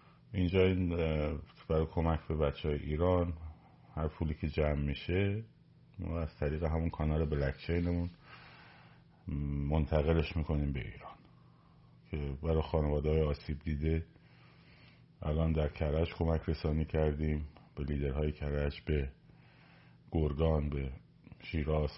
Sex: male